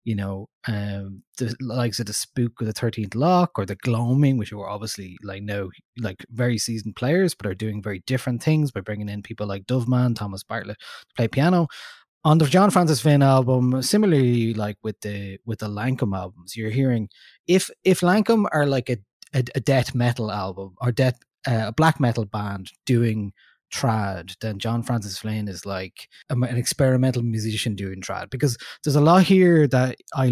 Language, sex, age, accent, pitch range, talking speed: English, male, 20-39, Irish, 105-135 Hz, 190 wpm